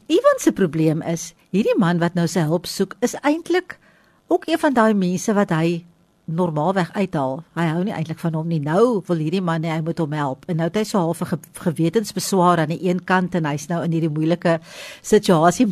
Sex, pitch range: female, 165-205 Hz